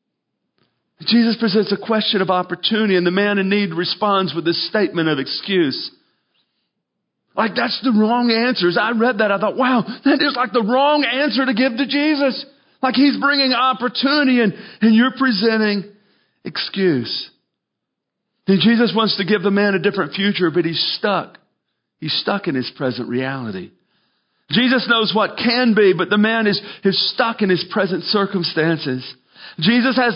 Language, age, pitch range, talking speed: English, 40-59, 170-230 Hz, 165 wpm